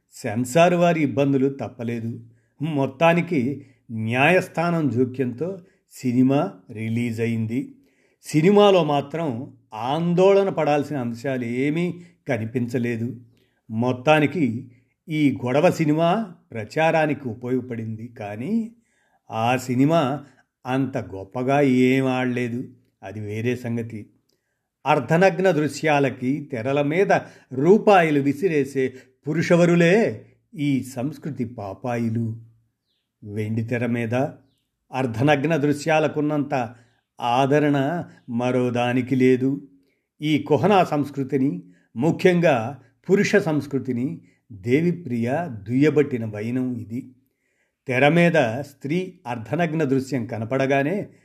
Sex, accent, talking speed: male, native, 80 wpm